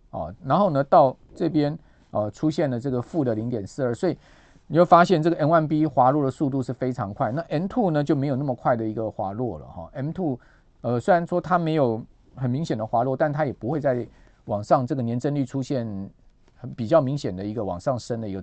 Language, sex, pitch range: Chinese, male, 115-160 Hz